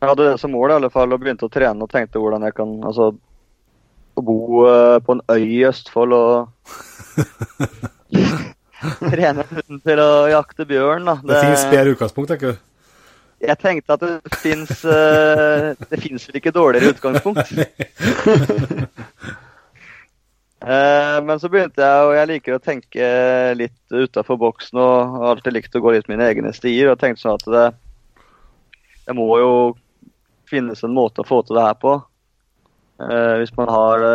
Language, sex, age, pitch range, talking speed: English, male, 20-39, 115-140 Hz, 165 wpm